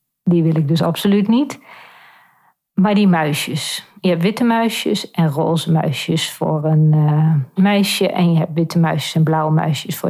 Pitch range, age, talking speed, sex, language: 160-185 Hz, 40-59, 170 wpm, female, Dutch